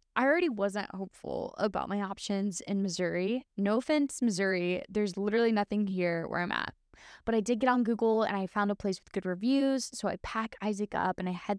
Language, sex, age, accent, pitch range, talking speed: English, female, 10-29, American, 195-250 Hz, 210 wpm